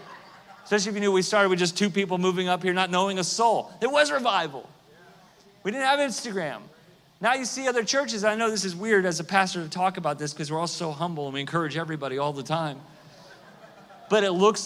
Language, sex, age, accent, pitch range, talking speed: English, male, 40-59, American, 170-215 Hz, 230 wpm